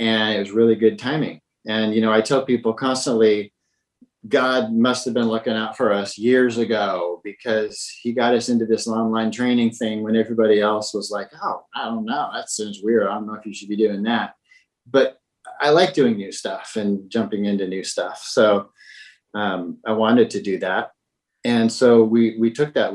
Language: English